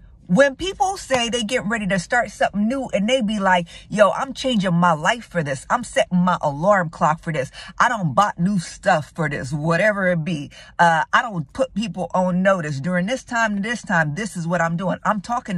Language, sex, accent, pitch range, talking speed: English, female, American, 170-230 Hz, 220 wpm